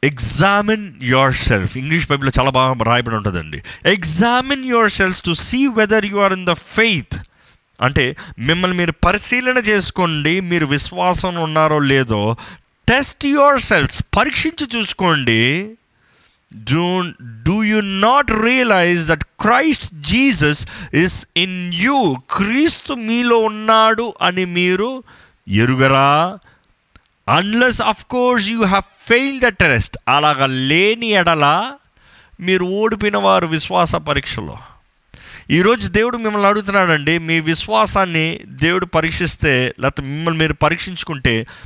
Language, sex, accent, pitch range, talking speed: Telugu, male, native, 130-210 Hz, 105 wpm